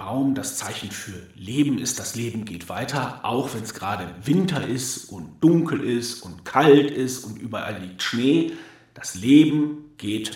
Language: German